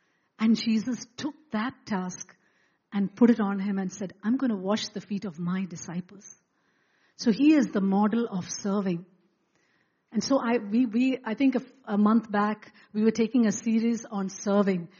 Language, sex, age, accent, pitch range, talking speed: English, female, 50-69, Indian, 195-240 Hz, 185 wpm